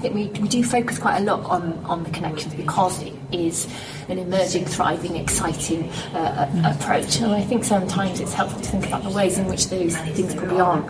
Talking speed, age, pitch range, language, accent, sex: 210 wpm, 30-49, 170-225 Hz, English, British, female